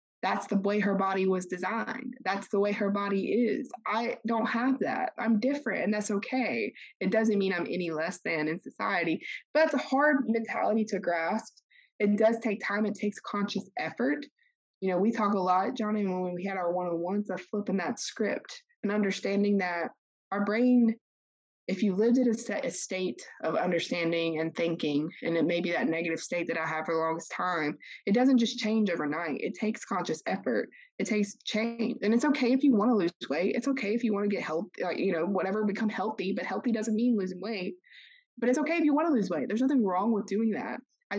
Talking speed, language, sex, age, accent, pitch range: 220 wpm, English, female, 20-39, American, 185-235 Hz